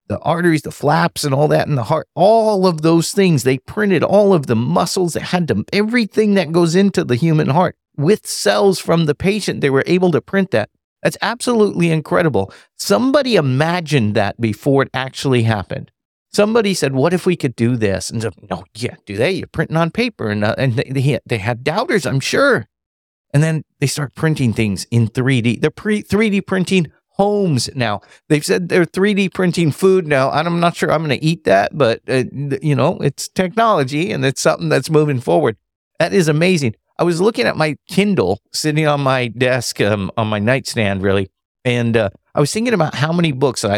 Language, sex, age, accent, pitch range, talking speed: English, male, 50-69, American, 125-185 Hz, 205 wpm